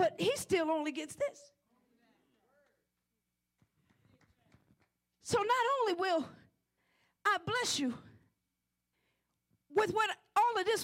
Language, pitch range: English, 285-475 Hz